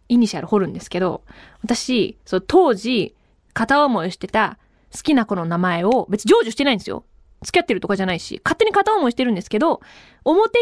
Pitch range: 200-290 Hz